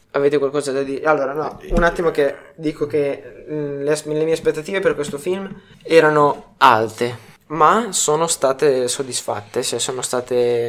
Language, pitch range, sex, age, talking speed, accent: Italian, 130-200 Hz, male, 20-39, 155 wpm, native